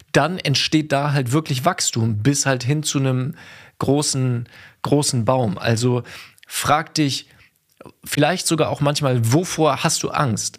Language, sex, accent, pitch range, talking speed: German, male, German, 125-155 Hz, 140 wpm